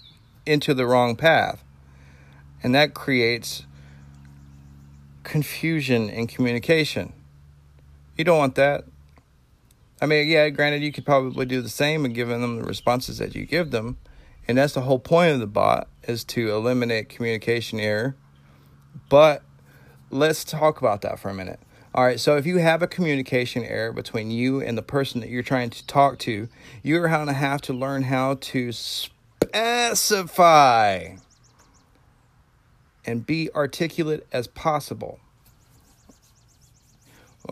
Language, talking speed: English, 140 wpm